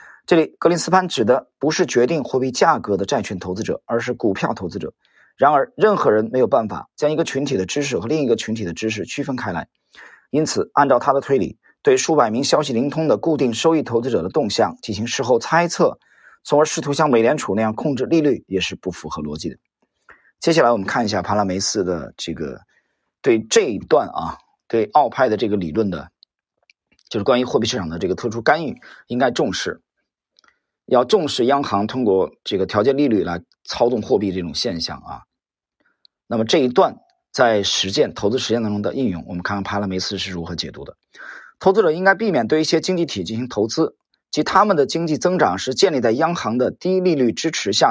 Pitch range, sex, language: 100-155 Hz, male, Chinese